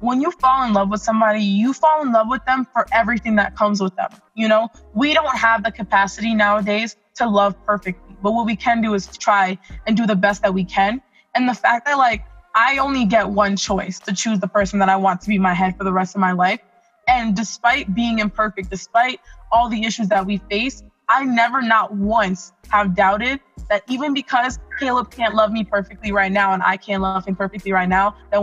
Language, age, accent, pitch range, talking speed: English, 20-39, American, 200-245 Hz, 225 wpm